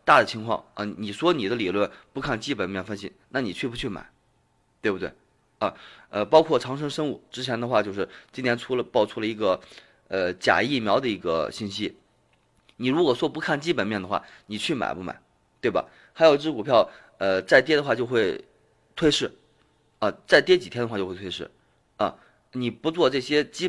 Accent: native